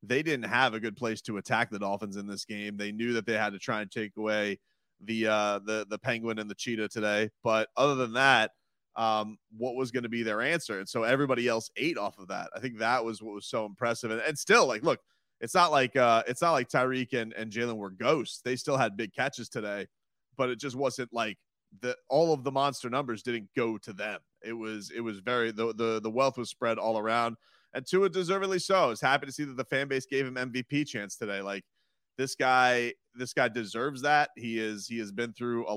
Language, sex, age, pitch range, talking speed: English, male, 30-49, 110-135 Hz, 245 wpm